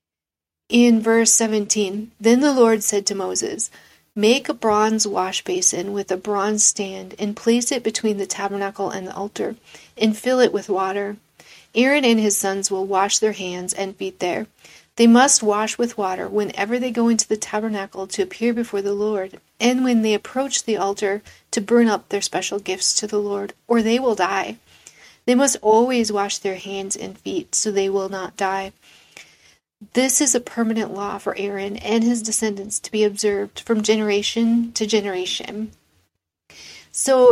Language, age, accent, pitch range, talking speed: English, 40-59, American, 195-230 Hz, 175 wpm